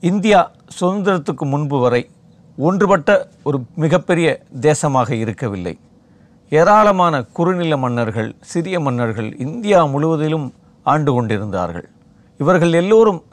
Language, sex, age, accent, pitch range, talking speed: Tamil, male, 50-69, native, 130-185 Hz, 90 wpm